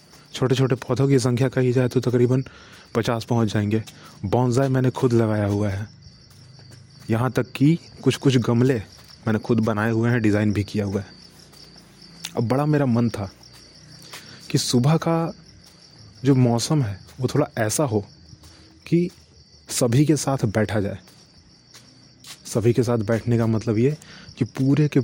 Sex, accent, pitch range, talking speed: male, Indian, 110-135 Hz, 150 wpm